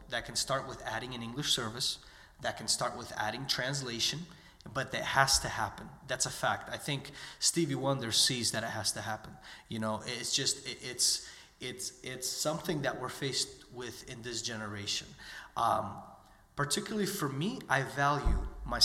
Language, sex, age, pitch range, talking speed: English, male, 30-49, 115-145 Hz, 175 wpm